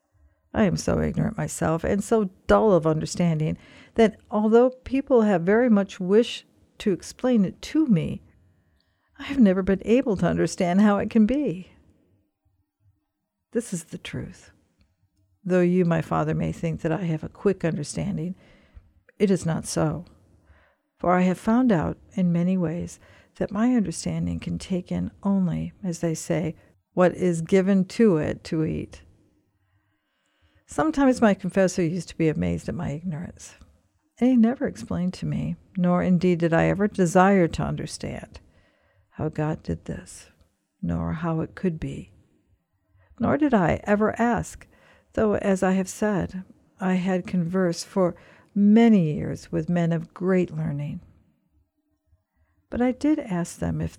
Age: 50-69